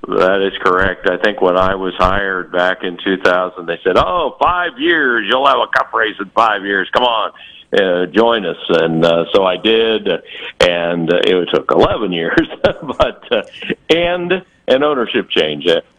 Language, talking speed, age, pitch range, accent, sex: English, 175 wpm, 50-69, 80-100 Hz, American, male